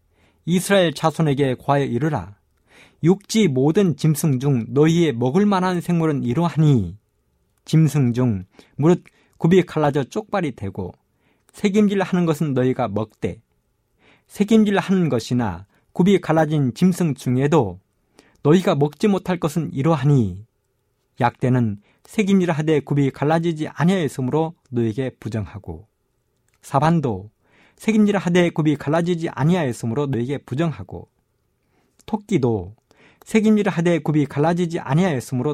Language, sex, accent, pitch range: Korean, male, native, 120-180 Hz